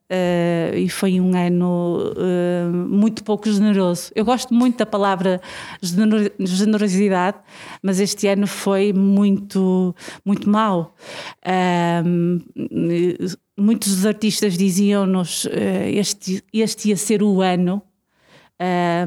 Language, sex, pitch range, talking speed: Portuguese, female, 190-220 Hz, 115 wpm